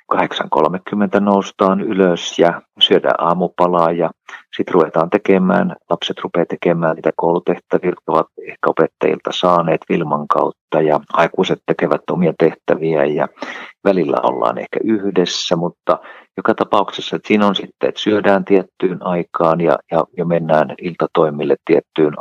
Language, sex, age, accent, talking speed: Finnish, male, 50-69, native, 125 wpm